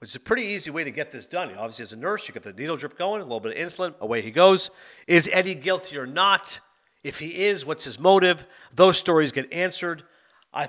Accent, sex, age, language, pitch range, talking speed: American, male, 50-69, English, 130-180 Hz, 245 wpm